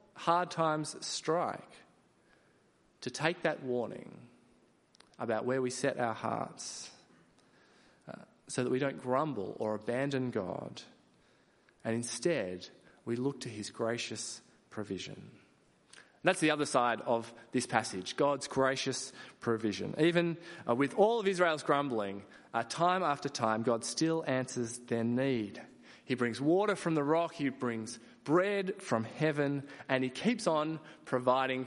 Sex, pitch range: male, 115-170 Hz